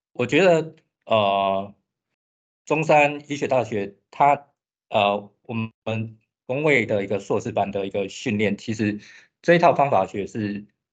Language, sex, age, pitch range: Chinese, male, 20-39, 100-125 Hz